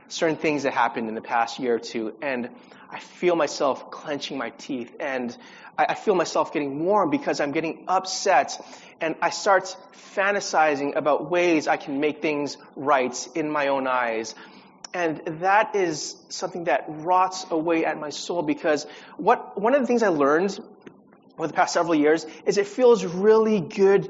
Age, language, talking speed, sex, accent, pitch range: 30-49, English, 175 wpm, male, American, 150-195 Hz